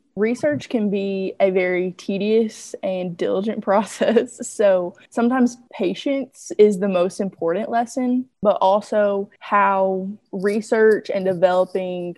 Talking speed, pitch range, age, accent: 115 wpm, 185-215 Hz, 20-39, American